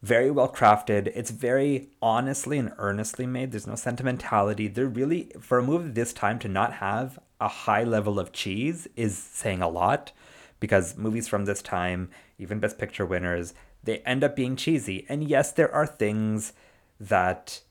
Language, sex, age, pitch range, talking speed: English, male, 30-49, 100-125 Hz, 175 wpm